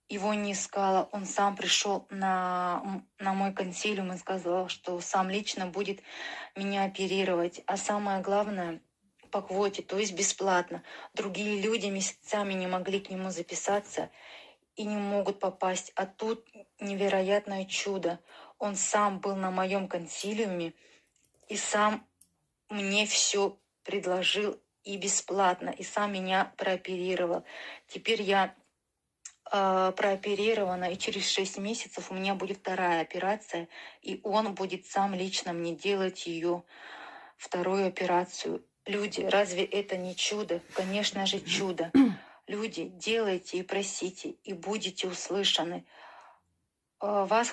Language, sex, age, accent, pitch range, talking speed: Russian, female, 20-39, native, 180-200 Hz, 120 wpm